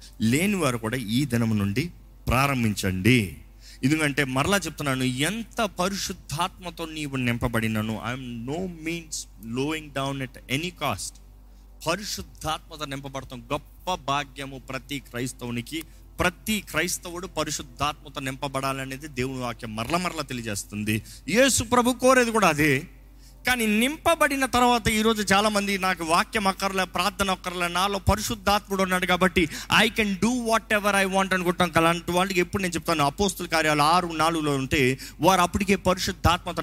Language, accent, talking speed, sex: Telugu, native, 125 wpm, male